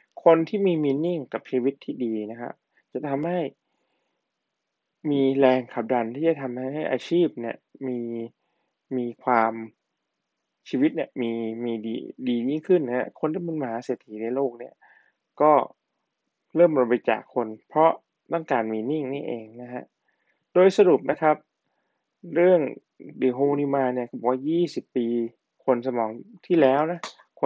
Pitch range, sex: 120-155 Hz, male